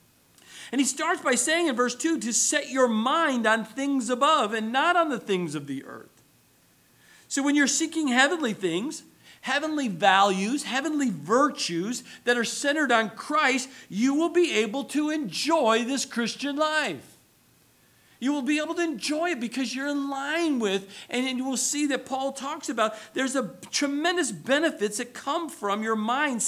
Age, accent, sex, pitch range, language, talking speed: 50-69, American, male, 225-290 Hz, English, 170 wpm